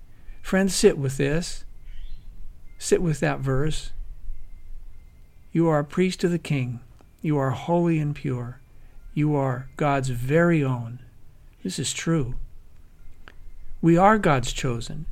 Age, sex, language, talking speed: 60-79, male, English, 125 wpm